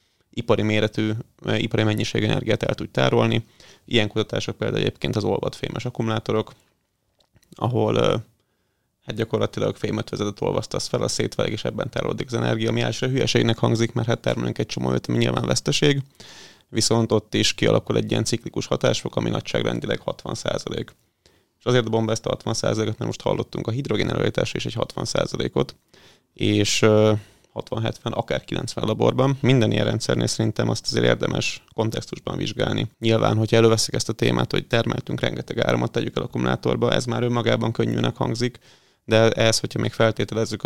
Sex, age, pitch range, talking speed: male, 30-49, 105-115 Hz, 160 wpm